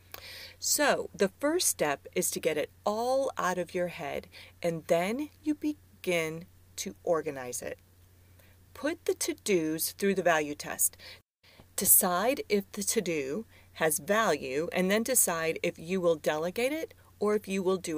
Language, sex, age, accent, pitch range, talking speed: English, female, 40-59, American, 160-235 Hz, 155 wpm